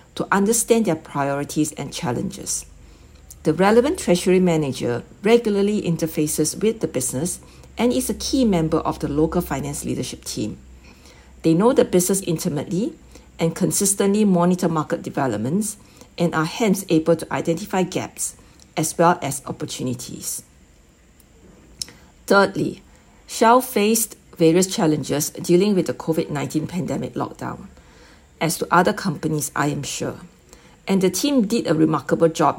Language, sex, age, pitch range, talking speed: English, female, 60-79, 155-200 Hz, 135 wpm